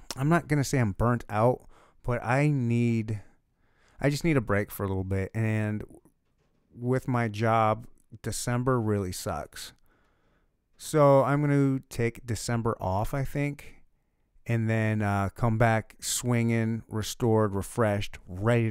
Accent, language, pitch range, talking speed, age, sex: American, English, 105-130 Hz, 135 wpm, 30-49, male